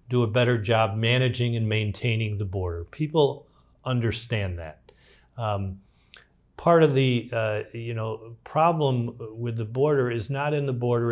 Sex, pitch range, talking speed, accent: male, 105-125 Hz, 140 wpm, American